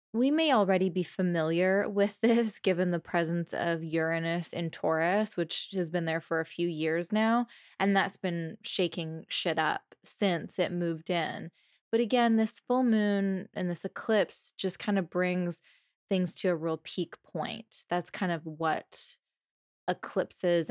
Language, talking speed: English, 160 wpm